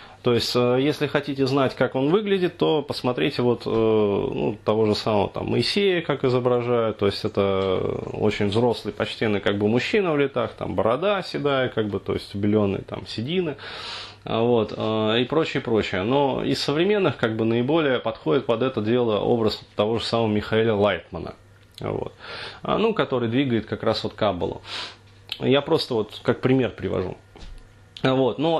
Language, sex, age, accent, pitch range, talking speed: Russian, male, 30-49, native, 110-145 Hz, 160 wpm